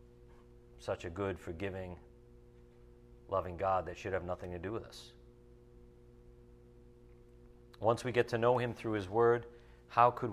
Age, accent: 40-59, American